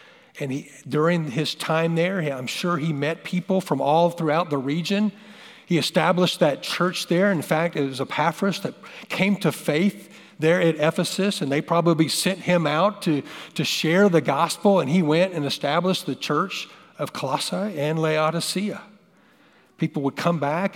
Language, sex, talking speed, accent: English, male, 170 wpm, American